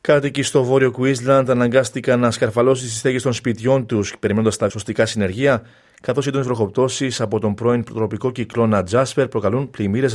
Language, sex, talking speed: Greek, male, 165 wpm